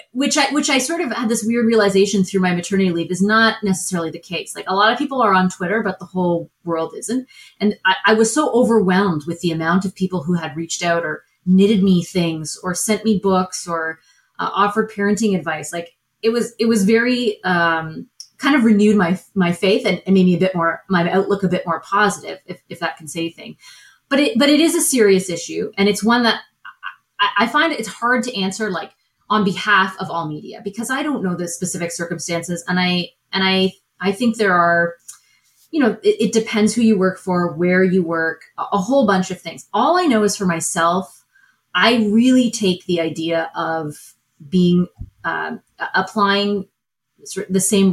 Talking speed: 210 wpm